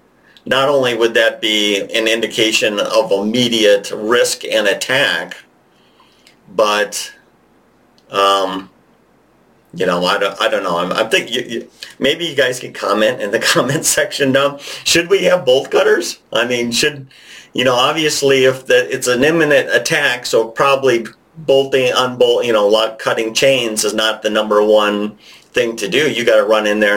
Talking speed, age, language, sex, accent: 160 wpm, 50-69, English, male, American